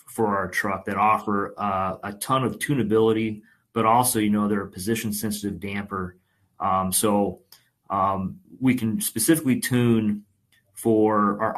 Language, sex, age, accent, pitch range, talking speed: English, male, 30-49, American, 100-115 Hz, 145 wpm